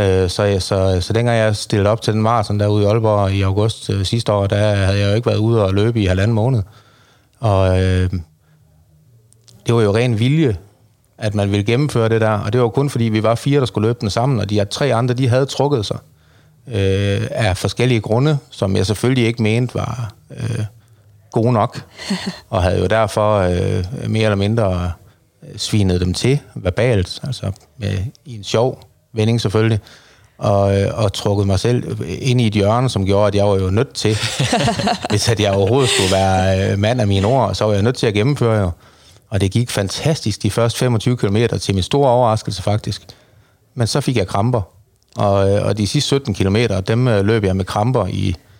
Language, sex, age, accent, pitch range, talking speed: Danish, male, 30-49, native, 100-120 Hz, 200 wpm